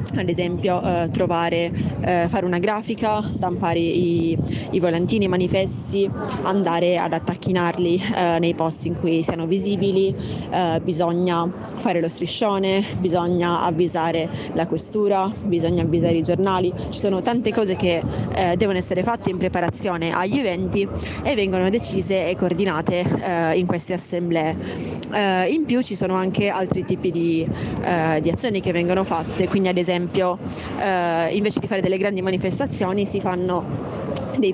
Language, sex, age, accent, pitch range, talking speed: Italian, female, 20-39, native, 175-195 Hz, 135 wpm